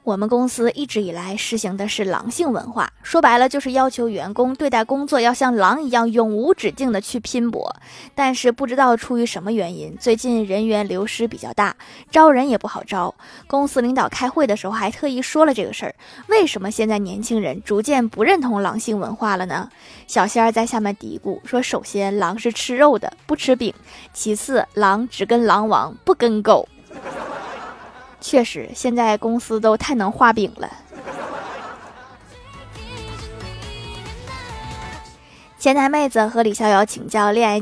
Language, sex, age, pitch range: Chinese, female, 20-39, 205-255 Hz